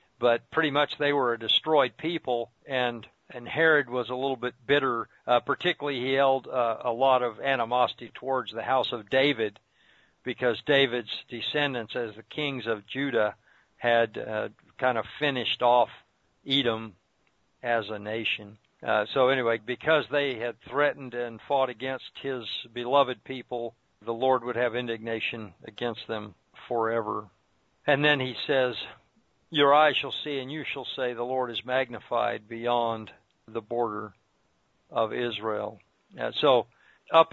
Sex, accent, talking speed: male, American, 150 wpm